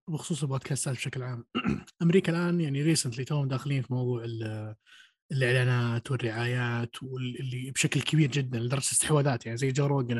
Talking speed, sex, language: 140 wpm, male, Arabic